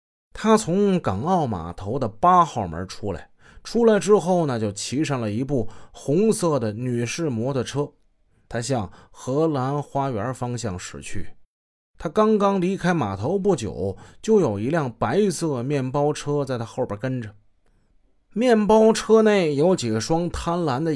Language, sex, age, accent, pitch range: Chinese, male, 20-39, native, 115-180 Hz